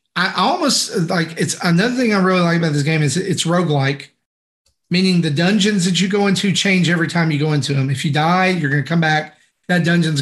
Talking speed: 235 wpm